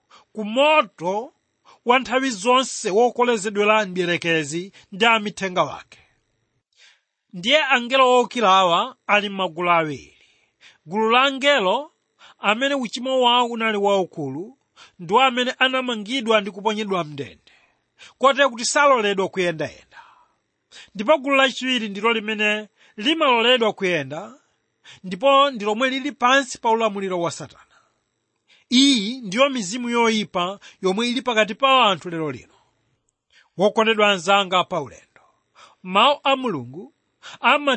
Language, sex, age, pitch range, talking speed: English, male, 40-59, 200-260 Hz, 100 wpm